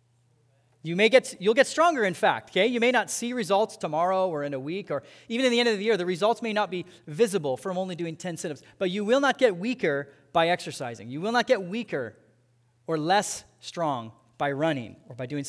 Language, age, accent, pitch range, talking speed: English, 30-49, American, 140-205 Hz, 230 wpm